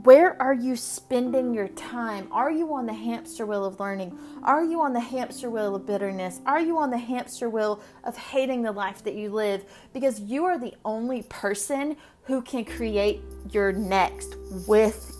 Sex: female